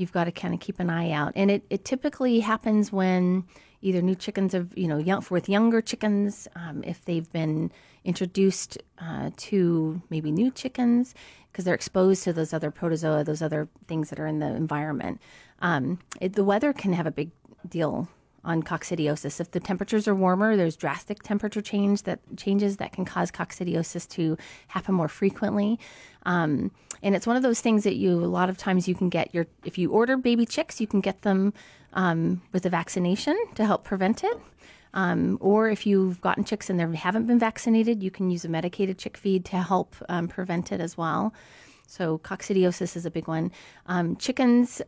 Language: English